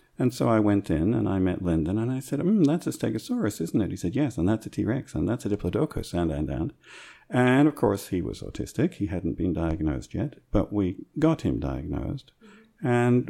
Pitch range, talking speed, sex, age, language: 100-145 Hz, 225 wpm, male, 50-69, Croatian